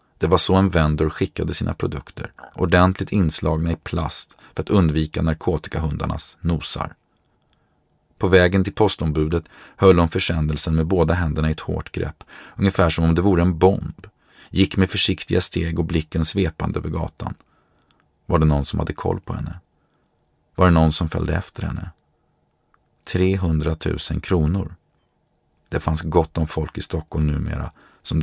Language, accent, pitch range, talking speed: English, Swedish, 80-95 Hz, 155 wpm